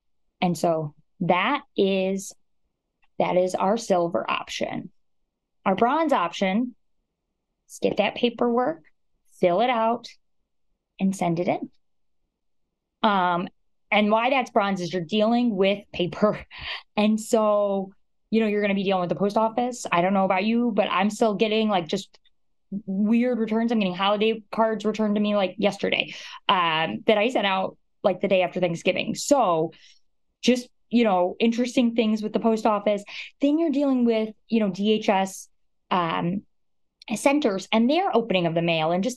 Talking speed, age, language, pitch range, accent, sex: 160 wpm, 20-39, English, 180-230 Hz, American, female